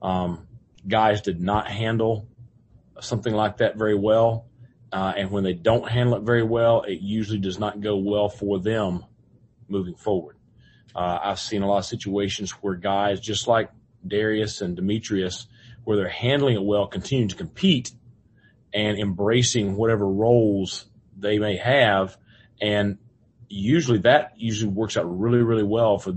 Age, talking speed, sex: 40-59, 155 wpm, male